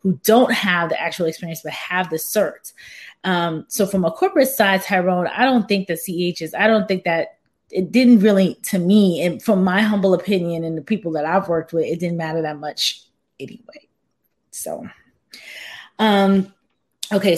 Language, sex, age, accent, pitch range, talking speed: English, female, 20-39, American, 170-205 Hz, 185 wpm